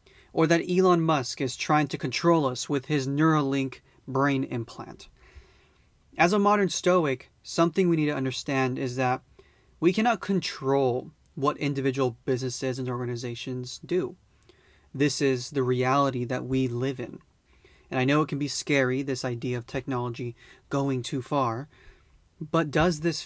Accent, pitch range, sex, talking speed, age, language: American, 130-155 Hz, male, 150 wpm, 30-49, English